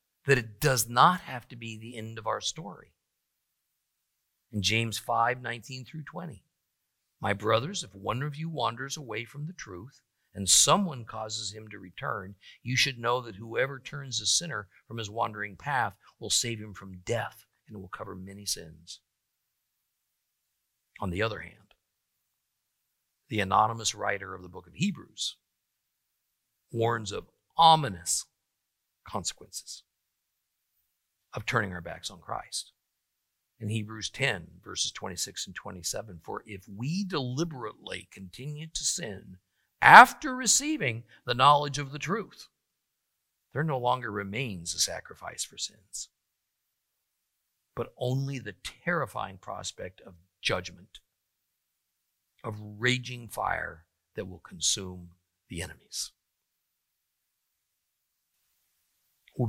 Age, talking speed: 50-69, 125 wpm